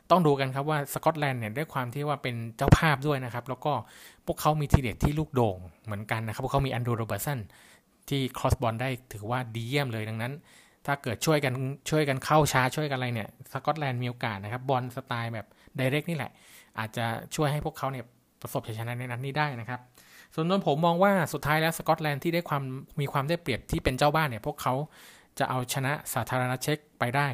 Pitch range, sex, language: 120-150 Hz, male, Thai